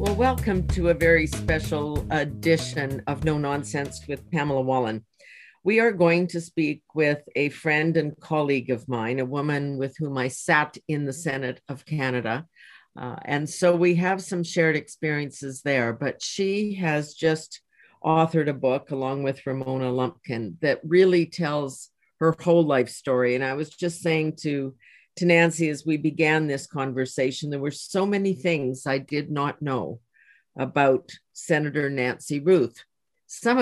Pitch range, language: 130-165 Hz, English